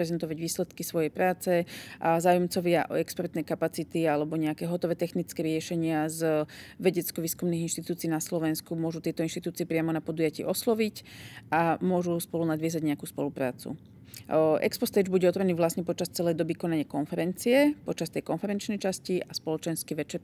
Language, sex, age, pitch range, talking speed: Slovak, female, 40-59, 165-195 Hz, 140 wpm